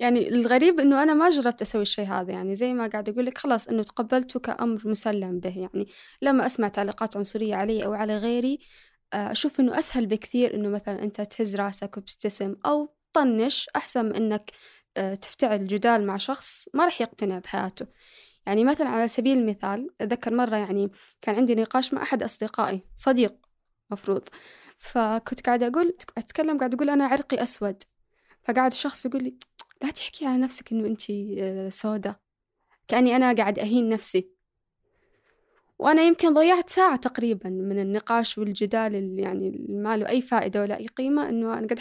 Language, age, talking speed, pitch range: Arabic, 10-29, 160 wpm, 205-265 Hz